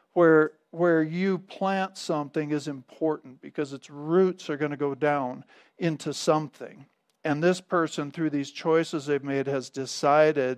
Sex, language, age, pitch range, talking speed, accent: male, English, 50-69, 140-165 Hz, 155 wpm, American